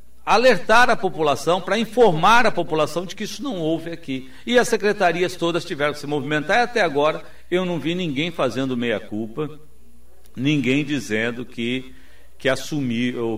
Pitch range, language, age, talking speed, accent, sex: 120-185 Hz, Portuguese, 60-79, 155 wpm, Brazilian, male